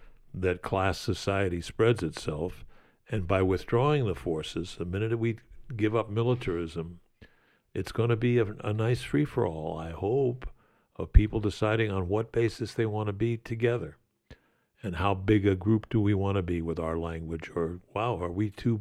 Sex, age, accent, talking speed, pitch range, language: male, 60-79, American, 175 wpm, 95-120 Hz, English